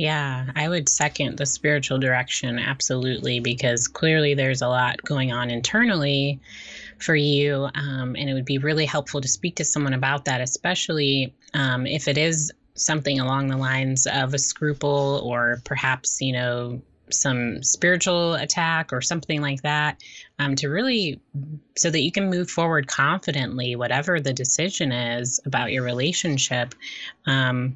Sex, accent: female, American